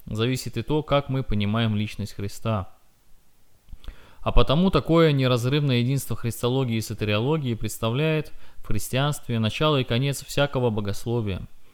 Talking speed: 125 wpm